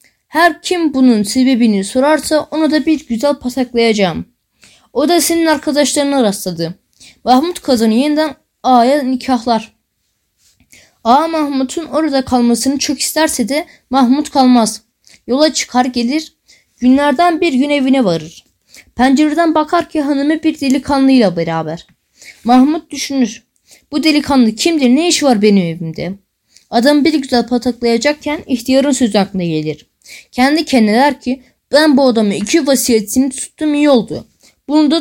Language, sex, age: Turkish, female, 10-29